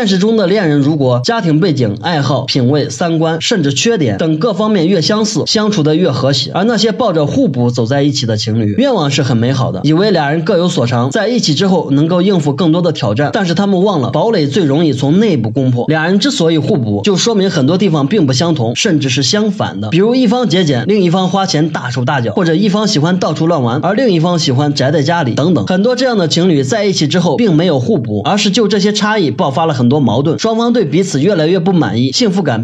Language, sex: Chinese, male